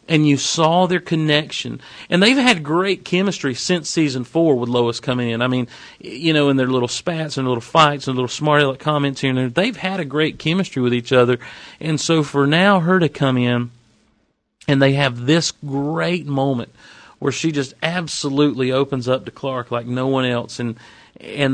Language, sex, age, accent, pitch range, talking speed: English, male, 40-59, American, 125-150 Hz, 200 wpm